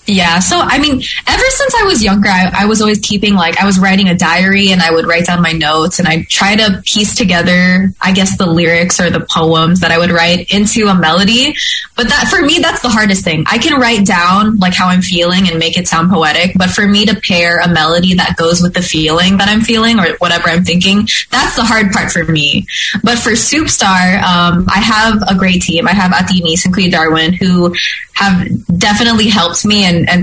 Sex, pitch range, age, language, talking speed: female, 175-210 Hz, 20-39, English, 230 wpm